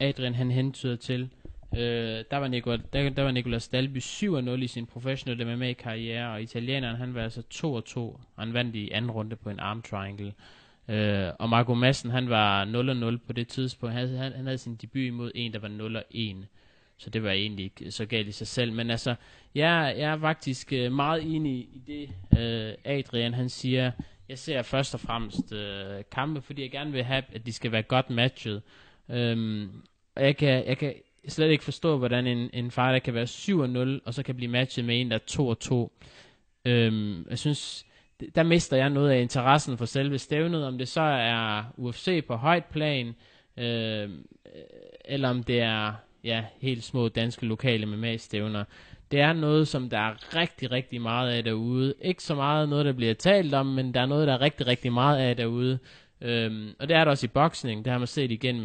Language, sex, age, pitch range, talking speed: Danish, male, 20-39, 115-135 Hz, 195 wpm